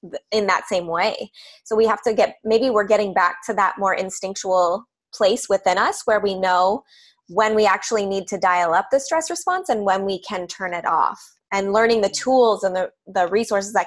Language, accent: English, American